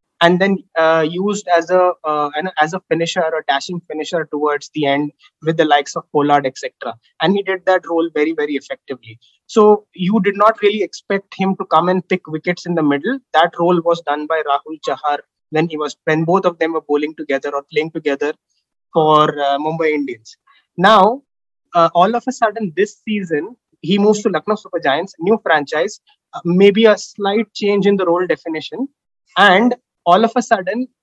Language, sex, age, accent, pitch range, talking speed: English, male, 20-39, Indian, 155-205 Hz, 190 wpm